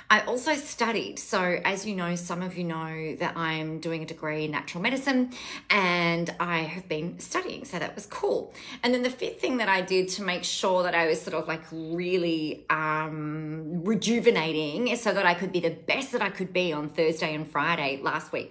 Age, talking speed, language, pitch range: 30-49, 210 wpm, English, 165-220 Hz